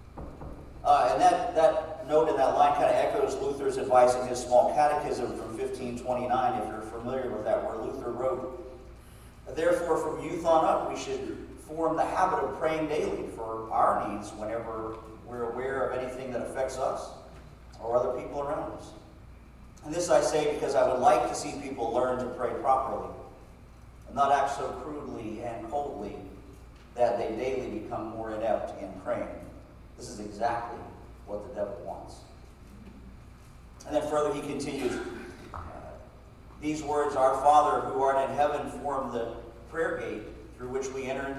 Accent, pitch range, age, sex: American, 120-155 Hz, 40-59, male